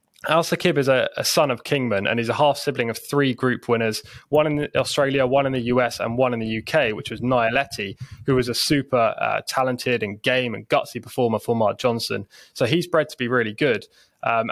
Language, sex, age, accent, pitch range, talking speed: English, male, 20-39, British, 115-135 Hz, 215 wpm